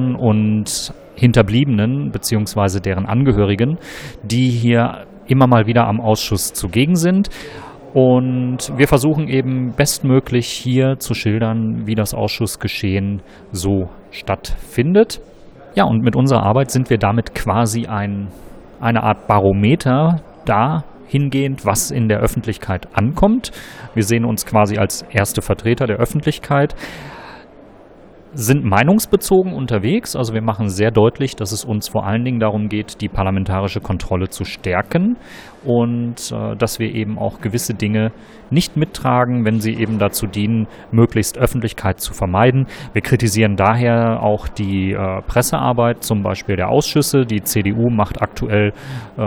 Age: 40-59